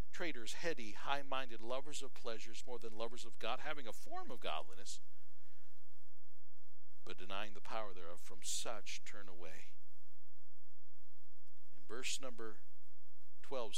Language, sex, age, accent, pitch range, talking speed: English, male, 50-69, American, 105-130 Hz, 125 wpm